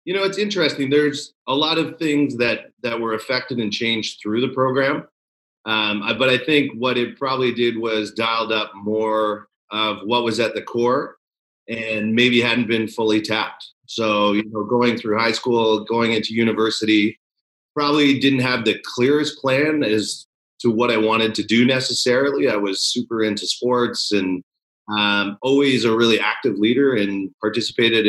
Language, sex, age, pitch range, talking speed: English, male, 30-49, 105-125 Hz, 175 wpm